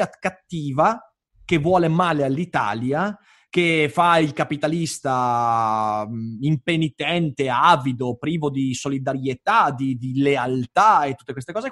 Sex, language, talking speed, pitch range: male, Italian, 110 wpm, 130-170 Hz